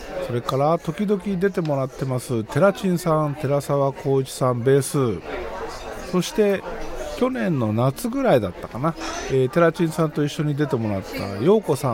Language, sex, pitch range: Japanese, male, 130-200 Hz